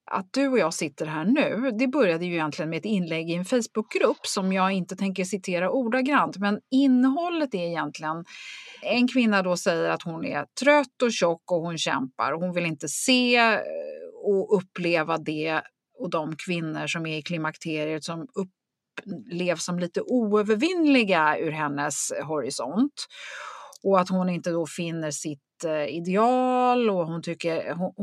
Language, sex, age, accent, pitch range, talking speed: Swedish, female, 30-49, native, 160-220 Hz, 160 wpm